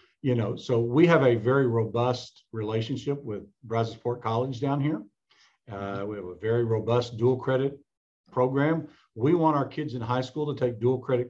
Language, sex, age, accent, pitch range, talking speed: English, male, 50-69, American, 115-145 Hz, 180 wpm